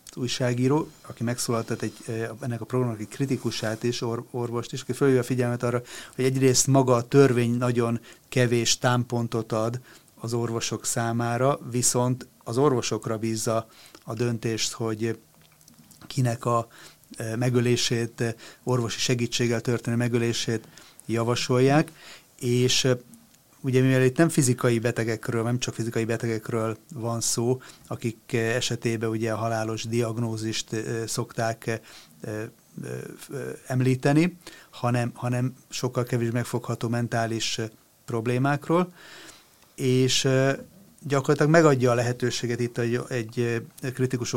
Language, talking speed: Hungarian, 110 wpm